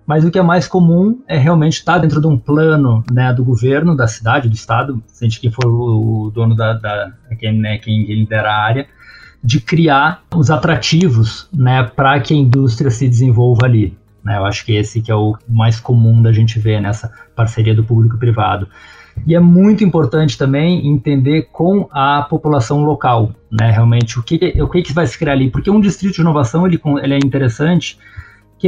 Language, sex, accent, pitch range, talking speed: Portuguese, male, Brazilian, 115-155 Hz, 195 wpm